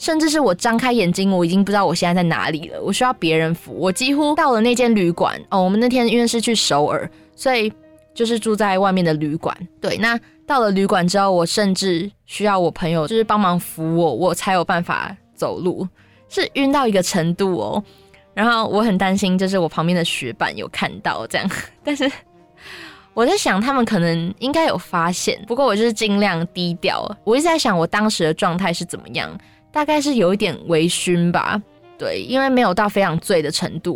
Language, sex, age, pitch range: Chinese, female, 20-39, 175-230 Hz